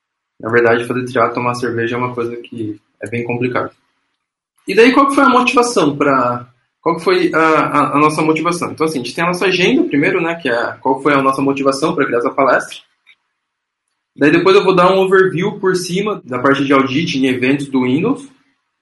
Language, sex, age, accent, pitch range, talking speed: Portuguese, male, 10-29, Brazilian, 130-180 Hz, 215 wpm